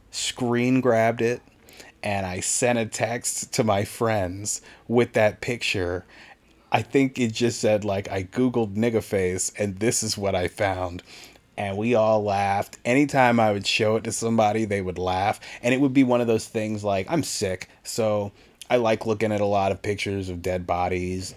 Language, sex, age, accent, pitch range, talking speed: English, male, 30-49, American, 90-115 Hz, 190 wpm